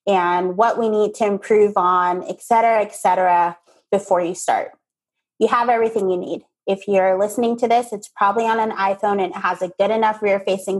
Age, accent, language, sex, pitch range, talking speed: 20-39, American, English, female, 195-250 Hz, 190 wpm